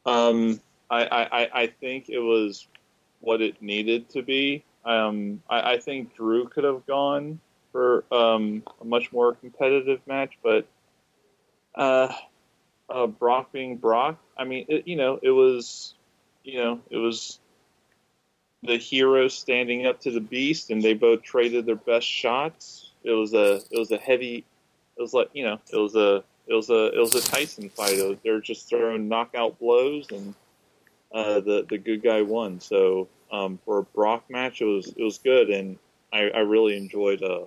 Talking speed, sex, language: 175 wpm, male, English